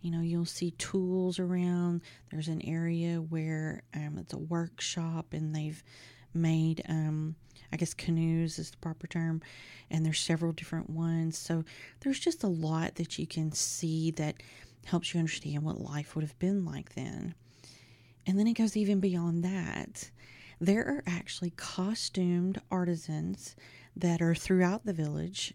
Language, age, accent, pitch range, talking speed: English, 40-59, American, 155-185 Hz, 155 wpm